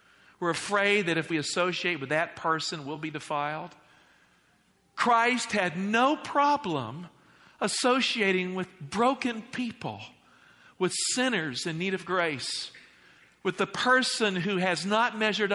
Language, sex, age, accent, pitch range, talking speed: English, male, 50-69, American, 150-205 Hz, 125 wpm